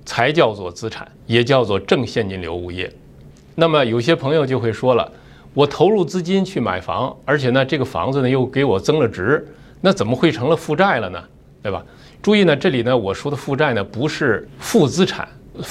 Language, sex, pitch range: Chinese, male, 115-165 Hz